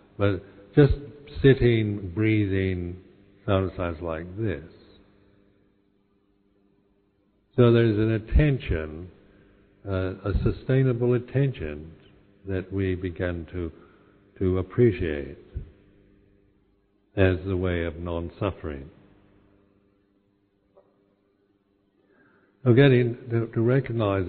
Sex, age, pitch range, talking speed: male, 60-79, 95-105 Hz, 75 wpm